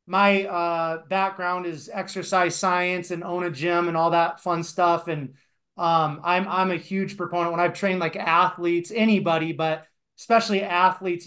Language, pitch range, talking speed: English, 170-195 Hz, 165 wpm